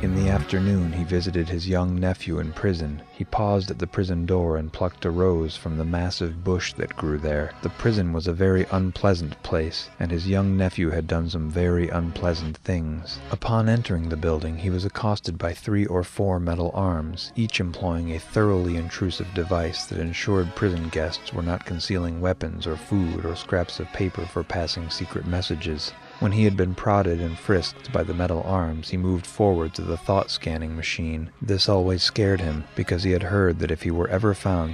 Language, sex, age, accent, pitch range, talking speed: English, male, 30-49, American, 80-95 Hz, 195 wpm